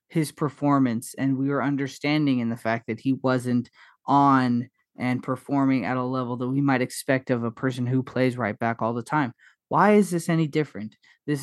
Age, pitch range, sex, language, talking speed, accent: 20-39, 130-165 Hz, male, English, 200 wpm, American